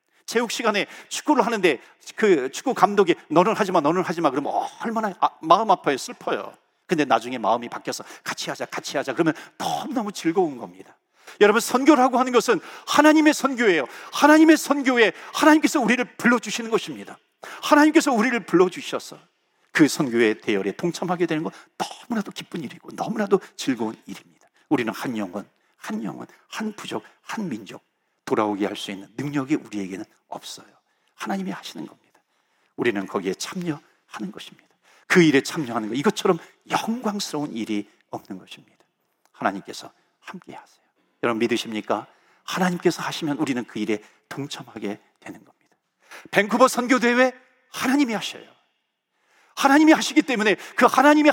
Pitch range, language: 165-275 Hz, Korean